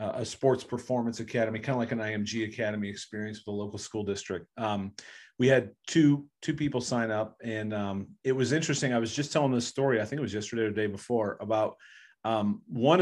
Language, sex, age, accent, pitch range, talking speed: English, male, 40-59, American, 110-130 Hz, 215 wpm